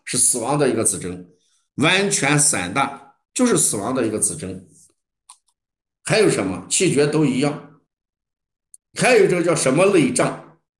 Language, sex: Chinese, male